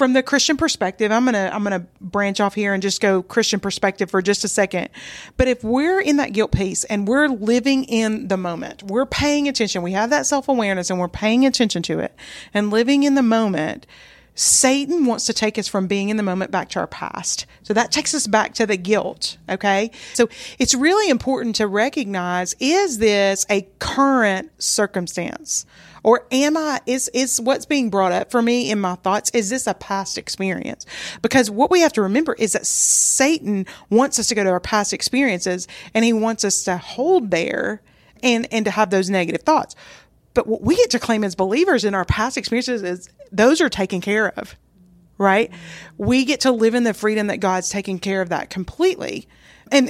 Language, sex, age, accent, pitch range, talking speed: English, female, 40-59, American, 195-260 Hz, 205 wpm